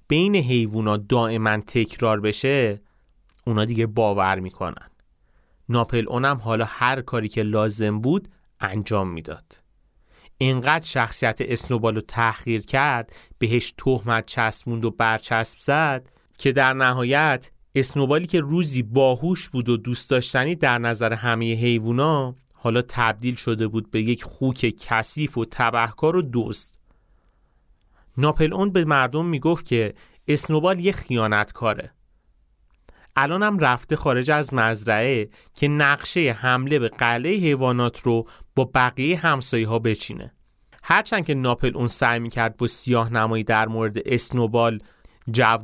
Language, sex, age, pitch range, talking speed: Persian, male, 30-49, 110-135 Hz, 130 wpm